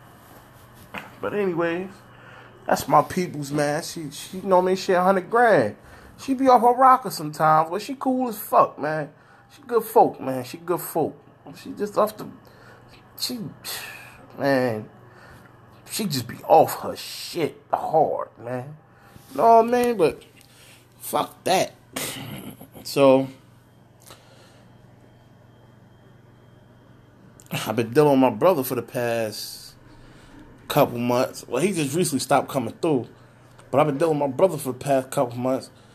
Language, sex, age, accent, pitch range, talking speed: English, male, 20-39, American, 130-185 Hz, 140 wpm